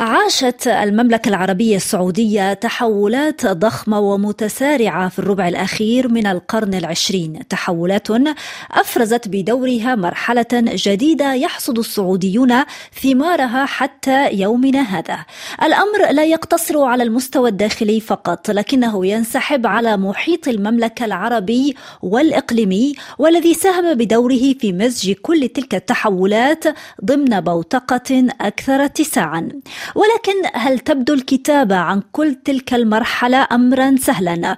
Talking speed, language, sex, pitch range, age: 105 wpm, Arabic, female, 215-285 Hz, 20-39